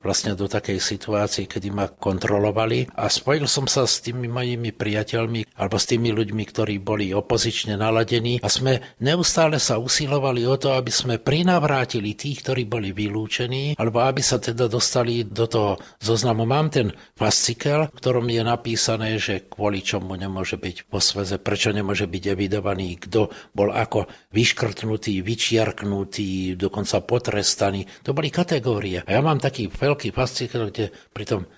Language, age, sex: Slovak, 60-79, male